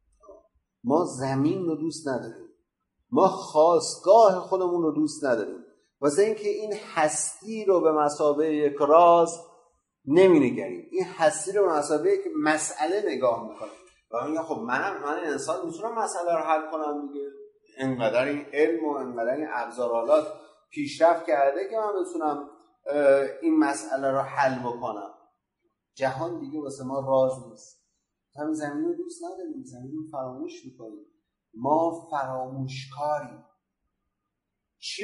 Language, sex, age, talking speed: Persian, male, 30-49, 135 wpm